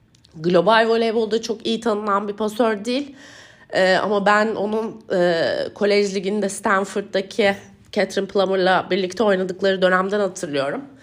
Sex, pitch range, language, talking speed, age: female, 180-225 Hz, Turkish, 120 wpm, 30-49